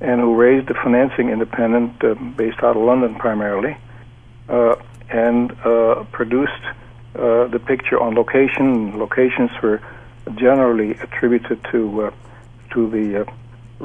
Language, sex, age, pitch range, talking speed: English, male, 60-79, 115-125 Hz, 130 wpm